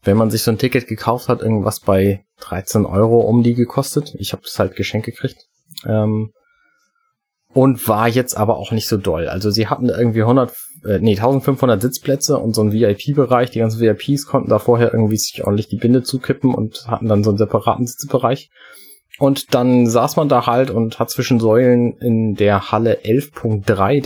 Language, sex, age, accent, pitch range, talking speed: German, male, 30-49, German, 110-135 Hz, 190 wpm